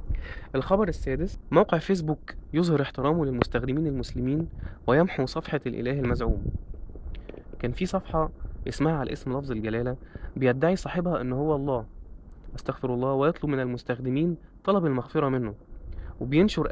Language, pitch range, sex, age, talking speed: Arabic, 115-155 Hz, male, 20-39, 120 wpm